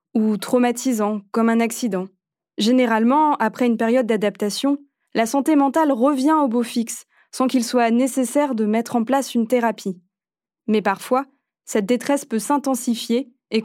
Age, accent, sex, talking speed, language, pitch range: 20-39, French, female, 150 wpm, French, 215-265 Hz